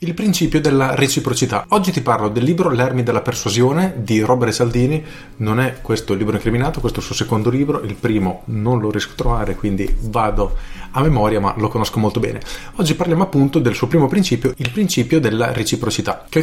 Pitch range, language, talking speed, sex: 115-155 Hz, Italian, 200 wpm, male